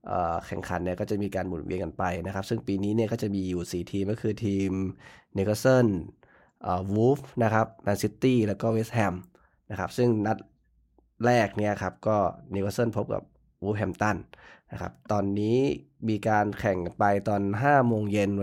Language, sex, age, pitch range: Thai, male, 20-39, 95-115 Hz